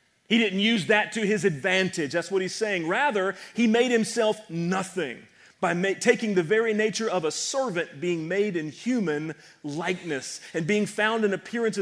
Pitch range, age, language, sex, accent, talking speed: 155-200 Hz, 40-59, English, male, American, 175 wpm